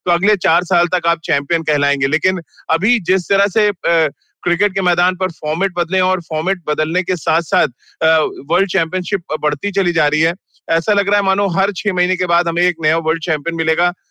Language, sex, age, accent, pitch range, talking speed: Hindi, male, 30-49, native, 155-185 Hz, 210 wpm